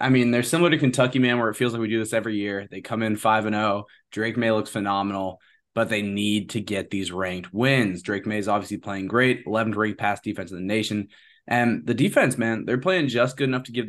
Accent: American